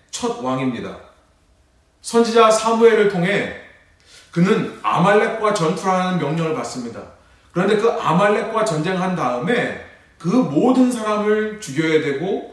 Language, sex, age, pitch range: Korean, male, 30-49, 150-210 Hz